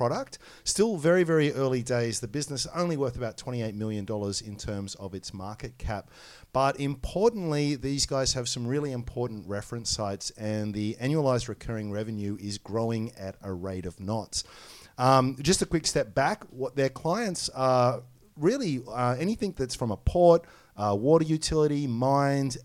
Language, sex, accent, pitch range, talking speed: English, male, Australian, 110-145 Hz, 165 wpm